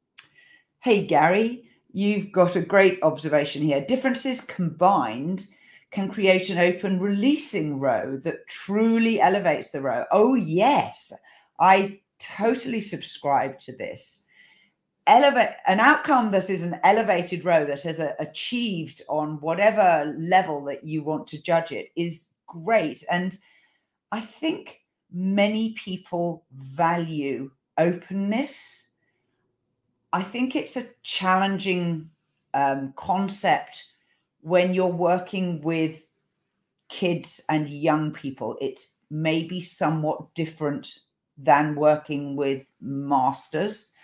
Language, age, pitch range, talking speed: English, 40-59, 150-195 Hz, 110 wpm